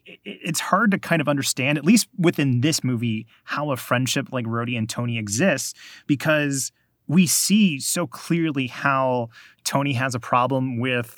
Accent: American